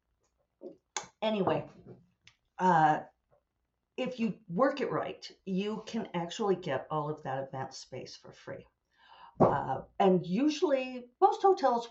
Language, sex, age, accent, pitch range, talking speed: English, female, 50-69, American, 160-235 Hz, 115 wpm